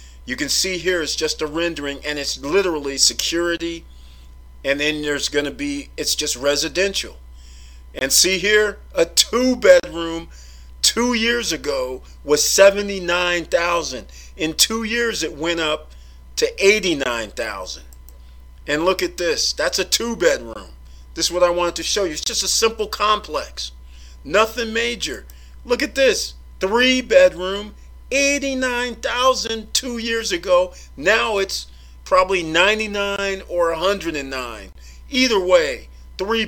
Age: 50-69